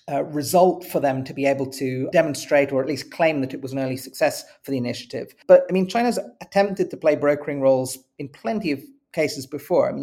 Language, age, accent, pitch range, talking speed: English, 40-59, British, 135-160 Hz, 225 wpm